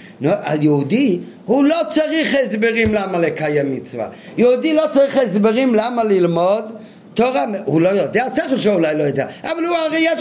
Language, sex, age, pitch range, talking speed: Hebrew, male, 50-69, 185-255 Hz, 160 wpm